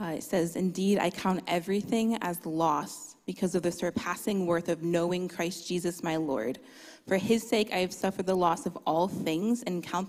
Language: English